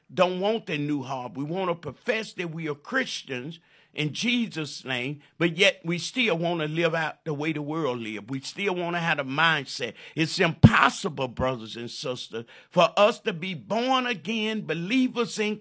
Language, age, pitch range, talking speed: English, 50-69, 150-205 Hz, 190 wpm